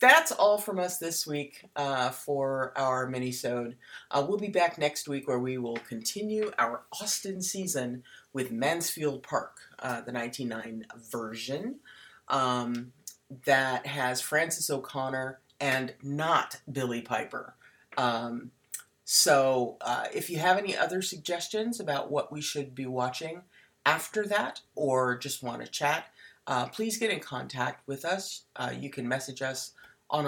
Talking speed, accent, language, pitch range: 145 wpm, American, English, 125-175 Hz